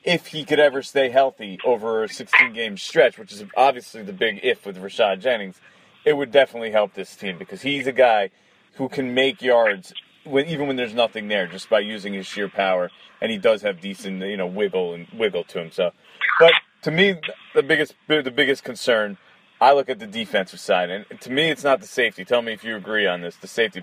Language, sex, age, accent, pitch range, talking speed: English, male, 30-49, American, 100-140 Hz, 220 wpm